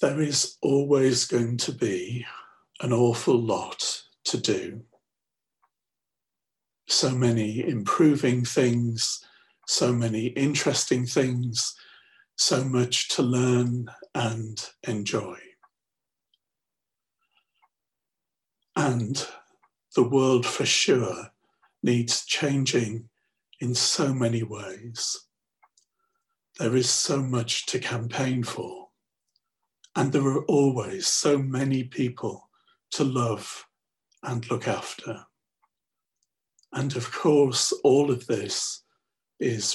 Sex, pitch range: male, 120-140 Hz